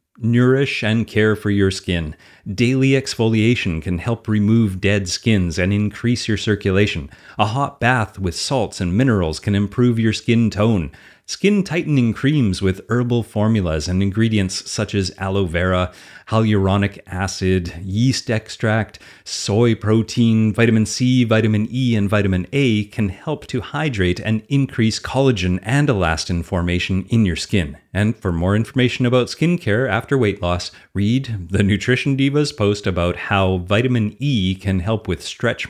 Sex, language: male, English